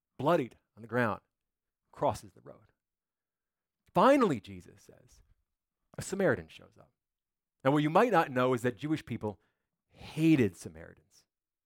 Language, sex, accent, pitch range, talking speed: English, male, American, 120-175 Hz, 135 wpm